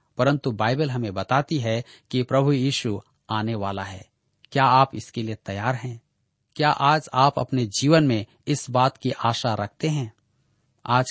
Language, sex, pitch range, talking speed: Hindi, male, 110-145 Hz, 160 wpm